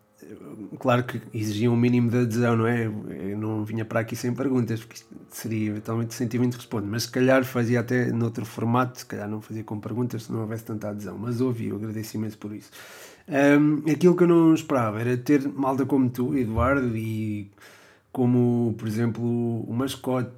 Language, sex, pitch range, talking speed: Portuguese, male, 110-130 Hz, 190 wpm